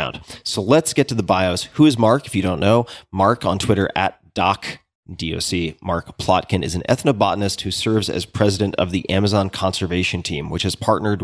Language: English